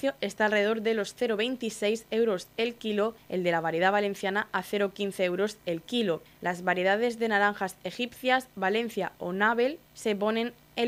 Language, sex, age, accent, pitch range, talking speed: Spanish, female, 20-39, Spanish, 195-230 Hz, 160 wpm